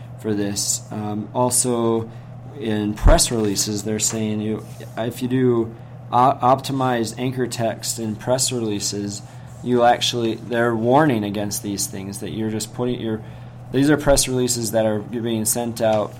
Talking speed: 150 wpm